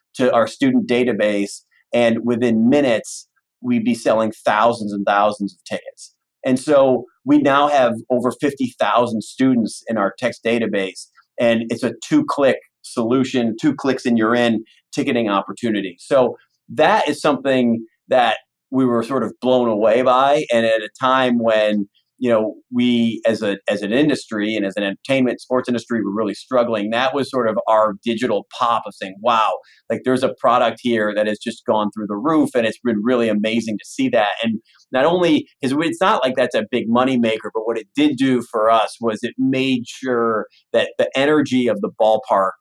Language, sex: English, male